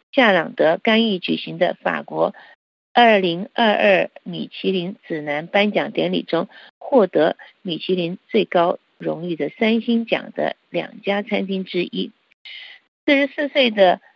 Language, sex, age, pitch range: Chinese, female, 50-69, 190-250 Hz